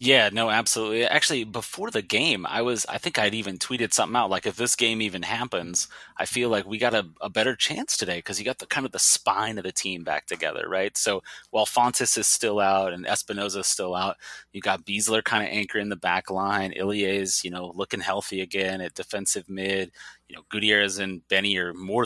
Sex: male